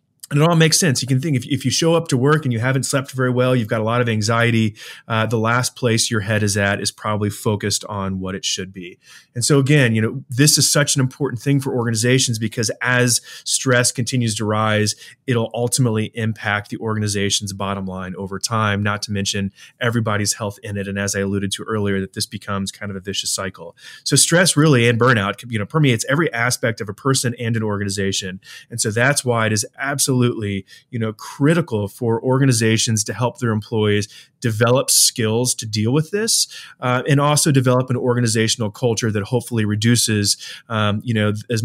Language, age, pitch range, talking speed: English, 30-49, 105-125 Hz, 205 wpm